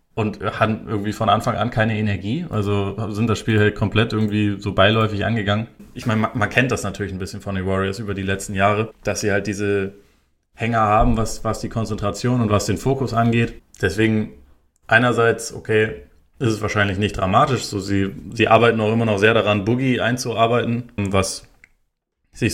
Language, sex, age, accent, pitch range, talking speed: German, male, 20-39, German, 100-115 Hz, 185 wpm